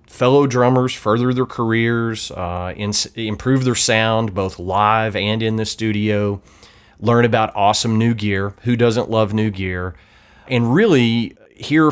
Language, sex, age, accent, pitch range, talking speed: English, male, 30-49, American, 100-125 Hz, 140 wpm